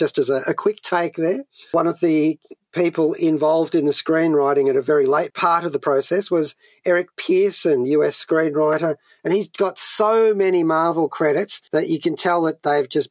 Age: 40-59